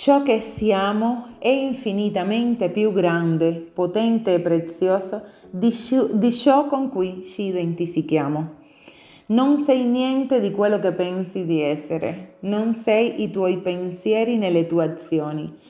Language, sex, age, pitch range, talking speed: Italian, female, 30-49, 175-235 Hz, 125 wpm